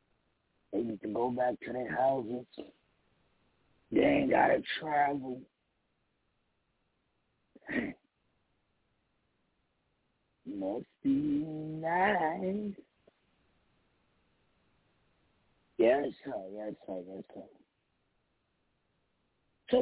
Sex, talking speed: male, 70 wpm